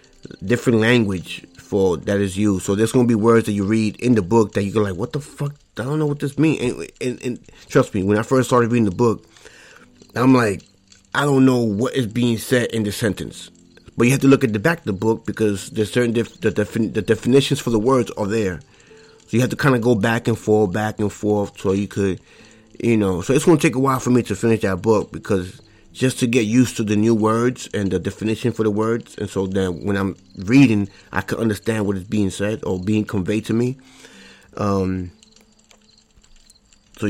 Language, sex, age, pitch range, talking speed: English, male, 30-49, 100-125 Hz, 230 wpm